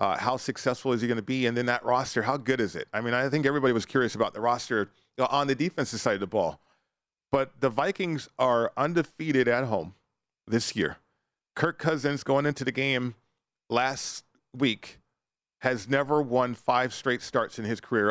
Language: English